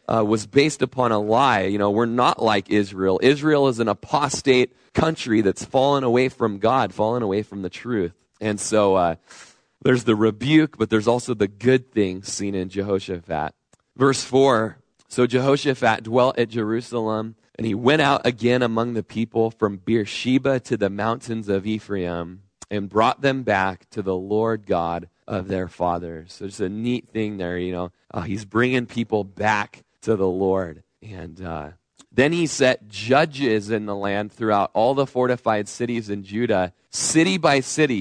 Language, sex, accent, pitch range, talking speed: English, male, American, 100-125 Hz, 185 wpm